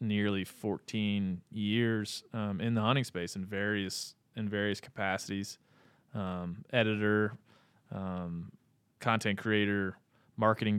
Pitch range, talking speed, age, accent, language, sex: 95-115 Hz, 105 wpm, 20-39, American, English, male